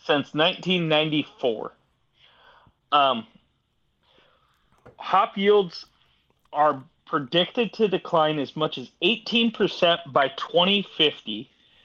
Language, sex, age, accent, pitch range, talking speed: English, male, 30-49, American, 135-180 Hz, 70 wpm